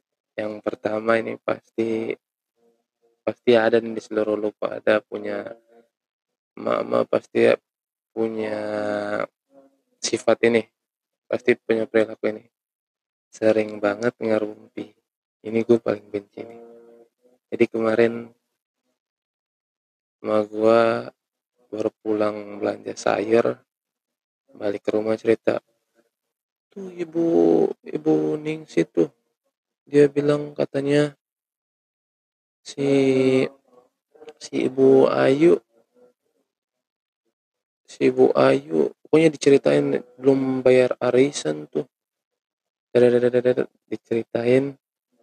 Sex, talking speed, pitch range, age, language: male, 85 wpm, 110-130 Hz, 20-39, Indonesian